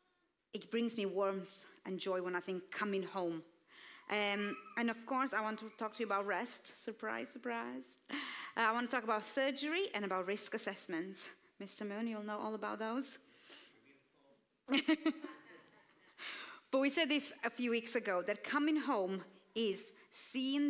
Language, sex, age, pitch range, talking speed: English, female, 30-49, 195-255 Hz, 160 wpm